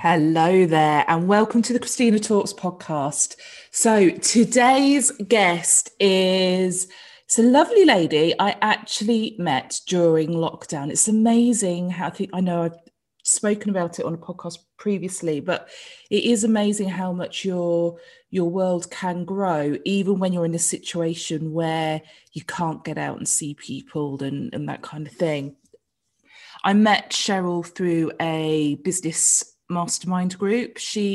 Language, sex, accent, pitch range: English, female, British, 160-200 Hz